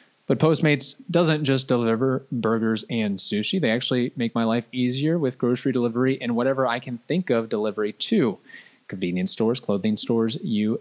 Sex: male